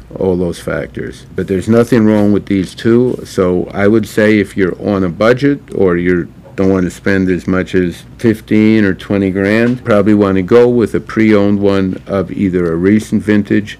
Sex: male